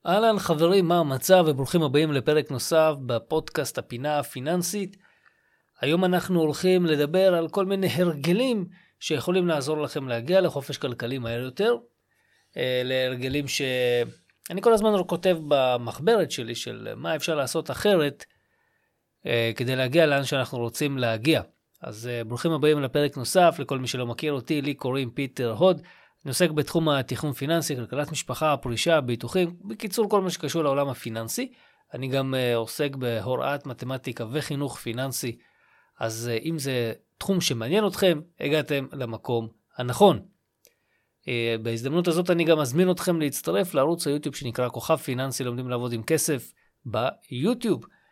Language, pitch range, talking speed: Hebrew, 125-170 Hz, 135 wpm